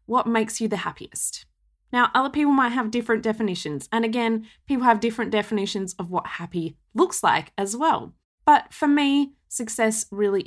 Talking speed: 170 wpm